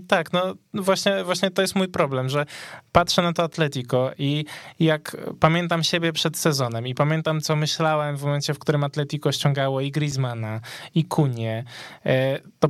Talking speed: 160 wpm